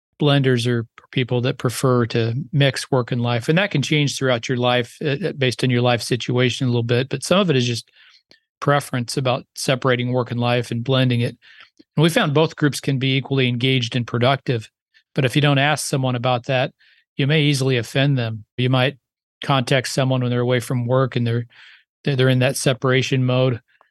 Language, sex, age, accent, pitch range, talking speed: English, male, 40-59, American, 125-140 Hz, 205 wpm